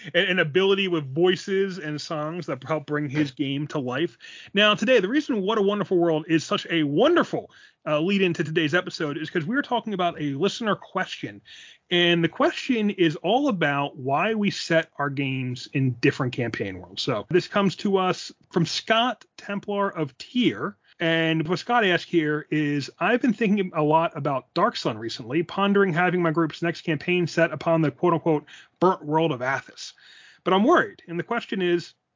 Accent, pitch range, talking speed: American, 150-195 Hz, 185 wpm